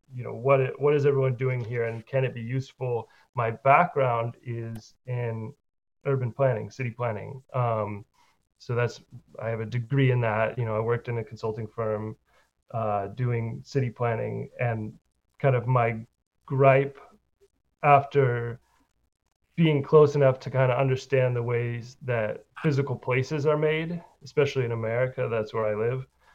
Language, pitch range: English, 115-135 Hz